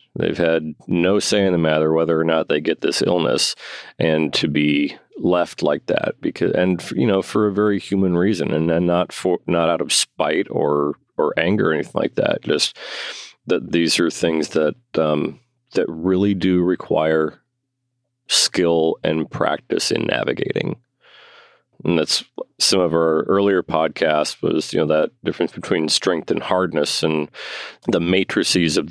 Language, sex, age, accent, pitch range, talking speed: English, male, 30-49, American, 80-105 Hz, 165 wpm